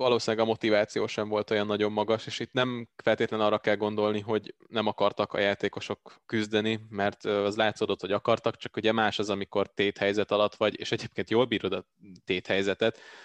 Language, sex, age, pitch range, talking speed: Hungarian, male, 20-39, 95-110 Hz, 180 wpm